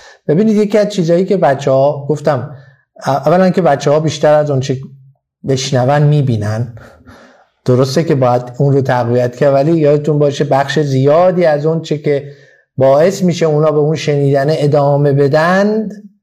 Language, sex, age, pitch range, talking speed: Persian, male, 50-69, 130-165 Hz, 135 wpm